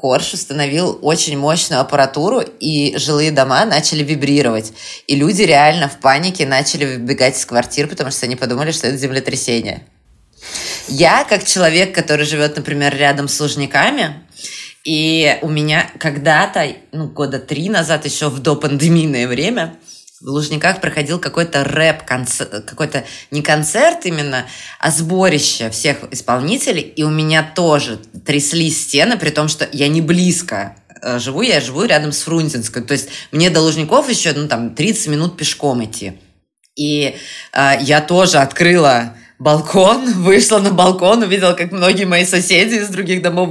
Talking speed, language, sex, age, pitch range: 150 wpm, Russian, female, 20-39, 140-165 Hz